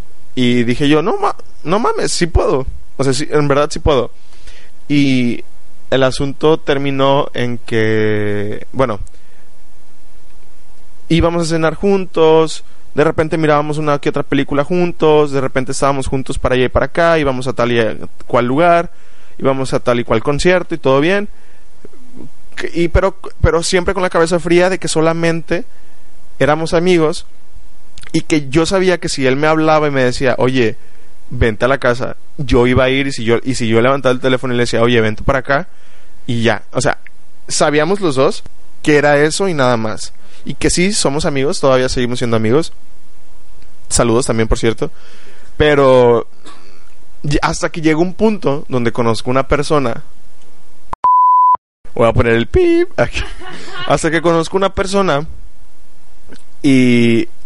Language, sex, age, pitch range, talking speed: Spanish, male, 20-39, 120-165 Hz, 165 wpm